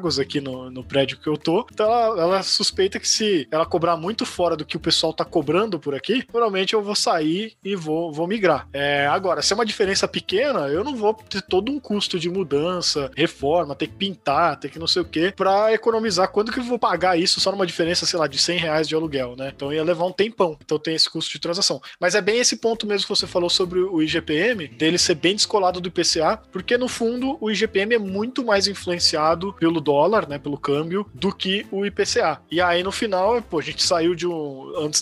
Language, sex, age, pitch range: Portuguese, male, 20-39, 155-200 Hz